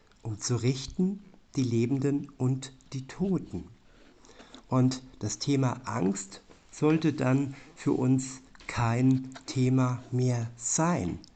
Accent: German